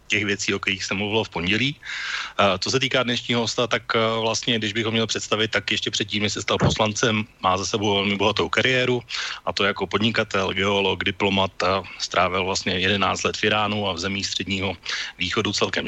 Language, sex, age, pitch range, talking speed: Slovak, male, 30-49, 100-115 Hz, 200 wpm